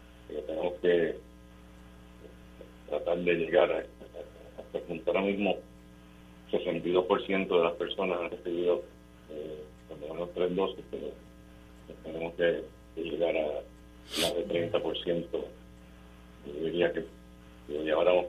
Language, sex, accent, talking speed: Spanish, male, Spanish, 110 wpm